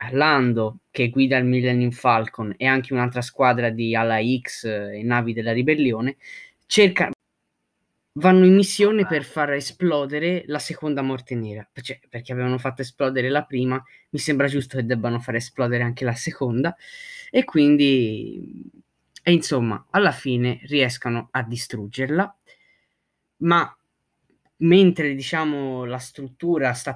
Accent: native